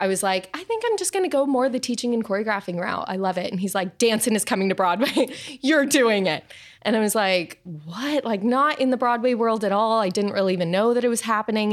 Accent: American